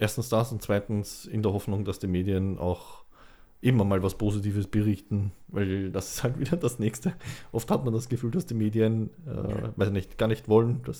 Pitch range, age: 95-110 Hz, 20-39